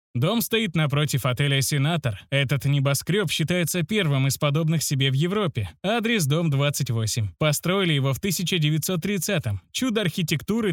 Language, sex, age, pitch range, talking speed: Russian, male, 20-39, 135-175 Hz, 135 wpm